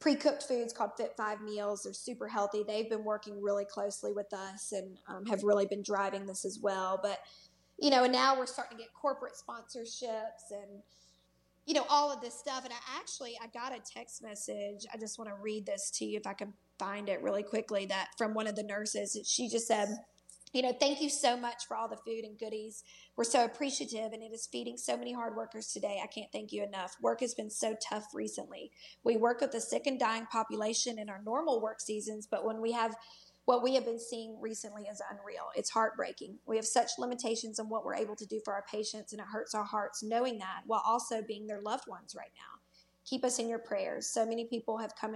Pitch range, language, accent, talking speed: 205-235 Hz, English, American, 235 wpm